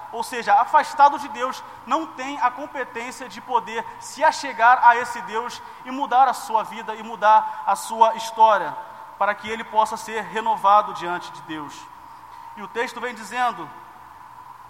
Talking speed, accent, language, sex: 165 wpm, Brazilian, Portuguese, male